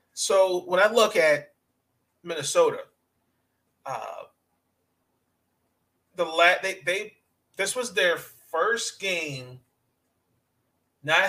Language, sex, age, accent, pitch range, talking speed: English, male, 30-49, American, 130-180 Hz, 90 wpm